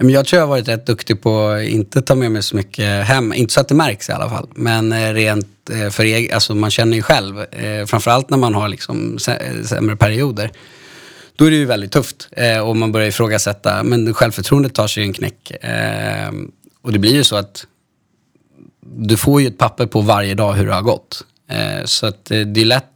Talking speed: 210 wpm